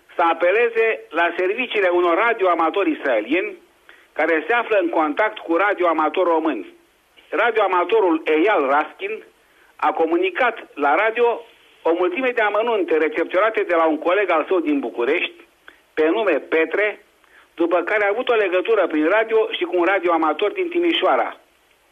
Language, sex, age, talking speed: Romanian, male, 60-79, 140 wpm